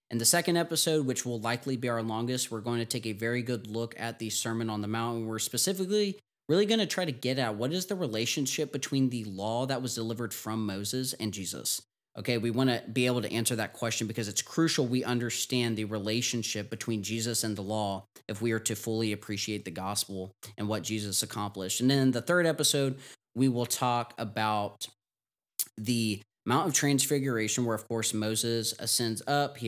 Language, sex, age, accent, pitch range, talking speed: English, male, 20-39, American, 105-125 Hz, 210 wpm